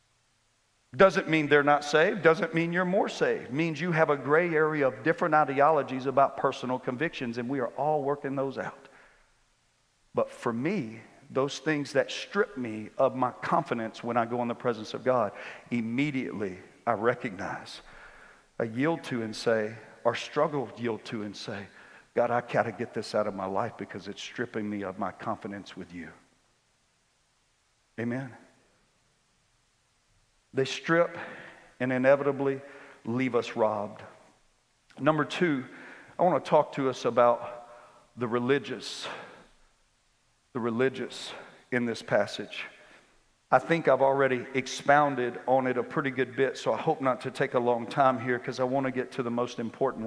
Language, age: English, 50-69